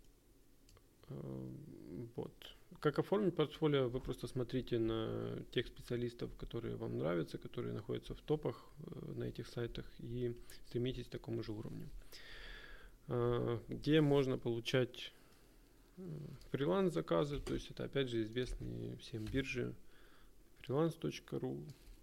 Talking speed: 110 wpm